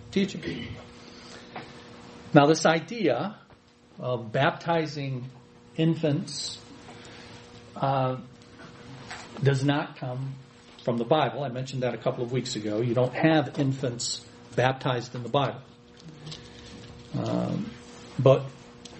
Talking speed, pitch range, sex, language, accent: 100 wpm, 110-160 Hz, male, English, American